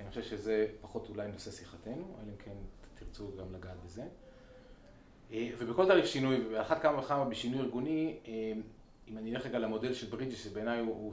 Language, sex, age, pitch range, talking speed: Hebrew, male, 30-49, 105-130 Hz, 175 wpm